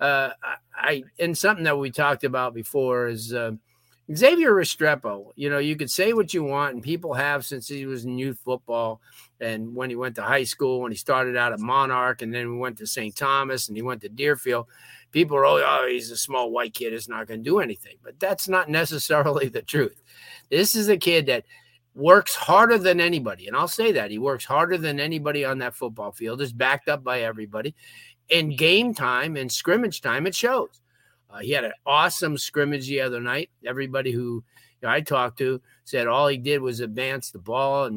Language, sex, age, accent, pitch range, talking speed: English, male, 50-69, American, 120-150 Hz, 215 wpm